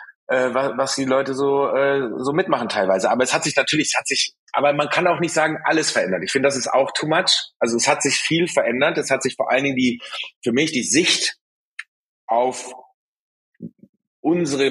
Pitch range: 125-150 Hz